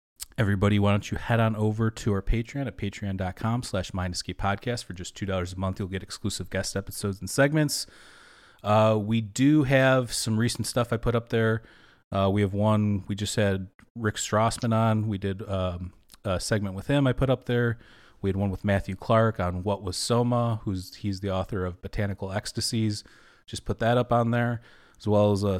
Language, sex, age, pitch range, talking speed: English, male, 30-49, 95-115 Hz, 200 wpm